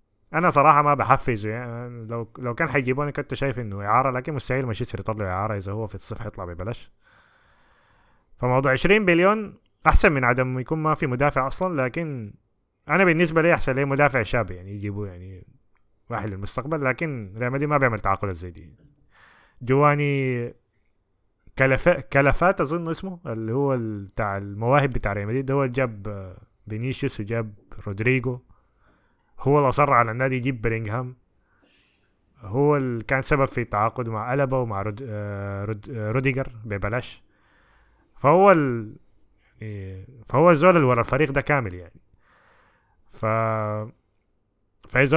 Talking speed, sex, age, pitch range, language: 135 wpm, male, 20-39, 105-145 Hz, Arabic